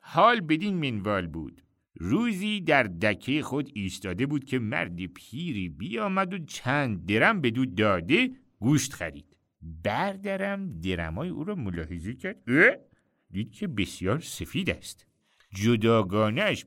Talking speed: 120 wpm